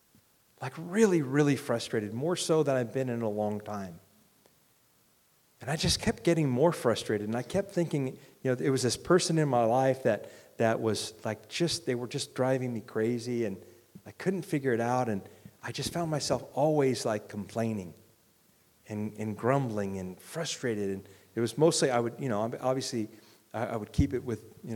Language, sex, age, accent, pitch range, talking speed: English, male, 40-59, American, 105-140 Hz, 190 wpm